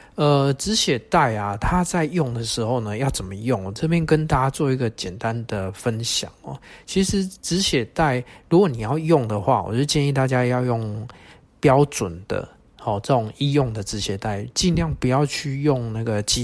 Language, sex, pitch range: Chinese, male, 110-135 Hz